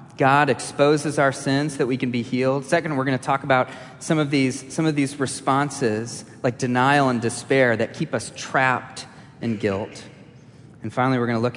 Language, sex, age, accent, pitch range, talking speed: English, male, 30-49, American, 120-155 Hz, 200 wpm